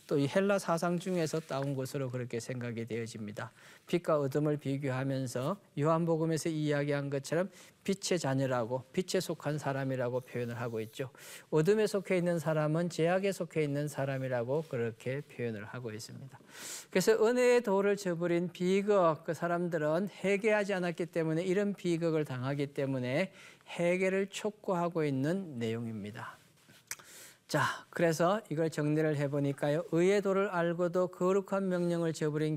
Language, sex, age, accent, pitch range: Korean, male, 40-59, native, 140-195 Hz